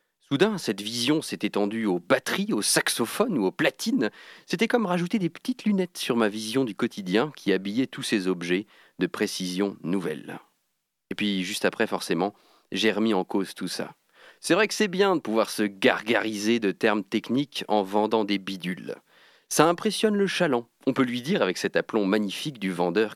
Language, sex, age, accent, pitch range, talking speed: French, male, 40-59, French, 100-160 Hz, 185 wpm